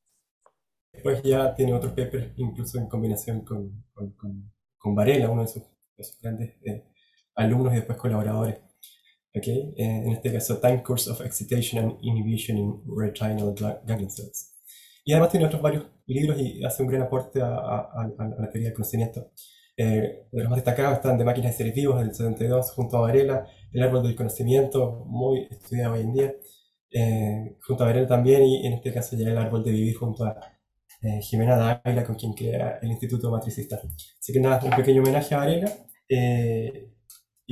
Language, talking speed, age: Spanish, 180 wpm, 20-39